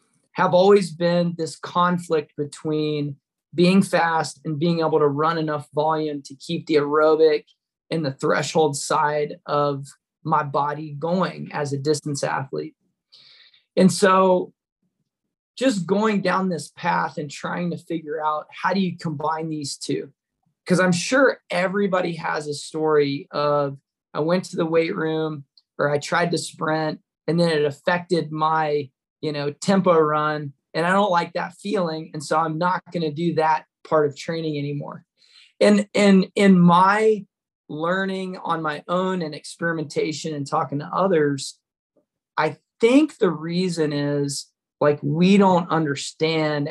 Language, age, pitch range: English, 20-39, 145-175 Hz